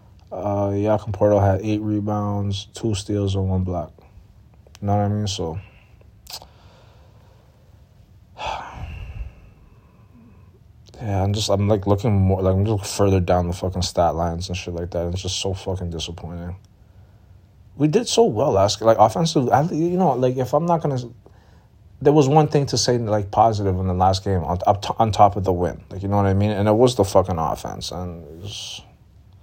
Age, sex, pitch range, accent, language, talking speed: 20-39, male, 95-110 Hz, American, English, 185 wpm